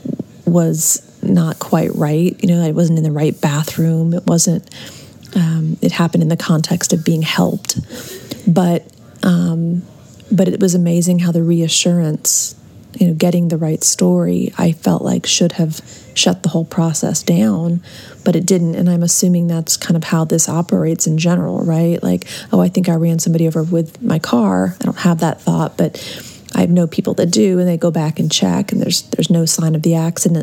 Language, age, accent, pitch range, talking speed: English, 30-49, American, 160-180 Hz, 195 wpm